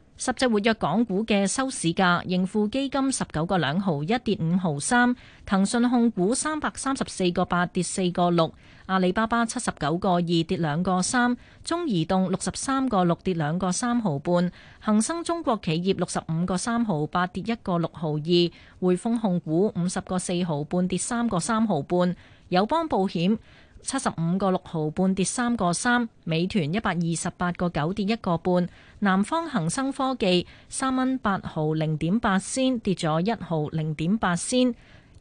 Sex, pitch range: female, 175-230 Hz